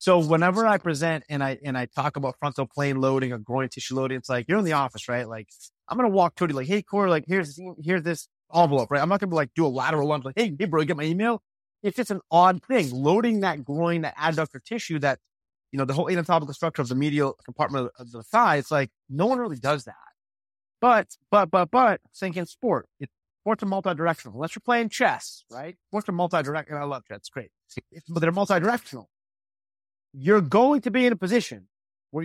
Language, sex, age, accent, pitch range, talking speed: English, male, 30-49, American, 135-180 Hz, 225 wpm